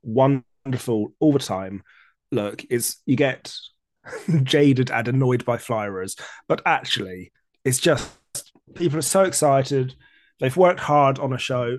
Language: English